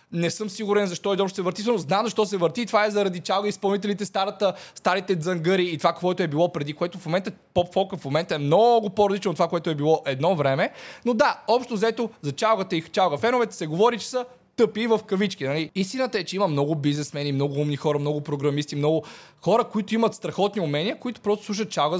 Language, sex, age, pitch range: Bulgarian, male, 20-39, 160-210 Hz